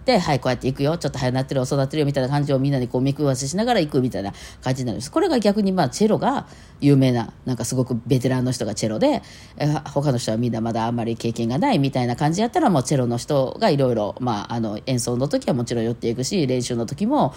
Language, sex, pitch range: Japanese, female, 125-170 Hz